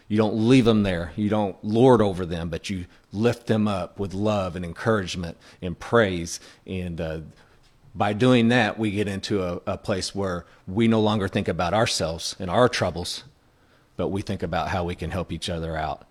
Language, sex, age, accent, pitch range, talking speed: English, male, 40-59, American, 90-115 Hz, 195 wpm